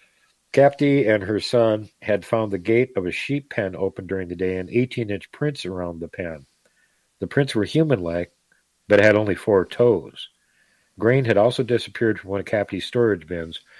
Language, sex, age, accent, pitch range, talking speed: English, male, 50-69, American, 90-110 Hz, 180 wpm